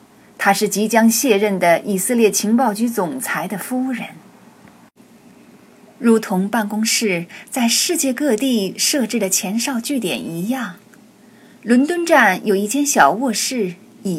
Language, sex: Chinese, female